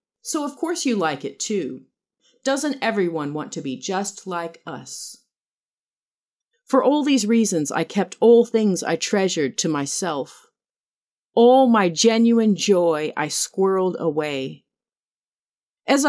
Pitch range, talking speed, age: 170-230 Hz, 130 wpm, 40-59